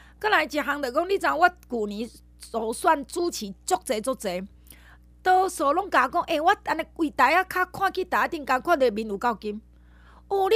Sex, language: female, Chinese